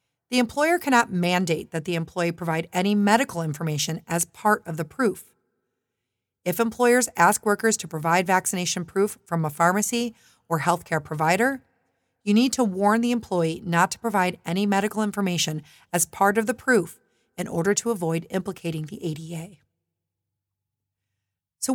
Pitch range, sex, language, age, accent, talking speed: 165-220 Hz, female, English, 40-59, American, 150 wpm